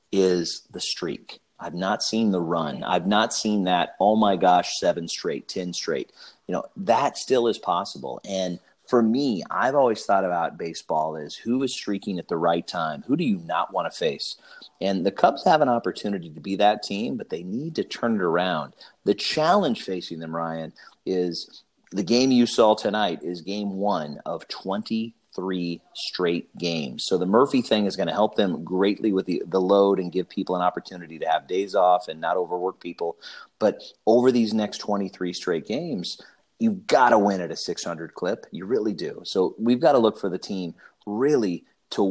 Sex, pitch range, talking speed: male, 90-120 Hz, 200 wpm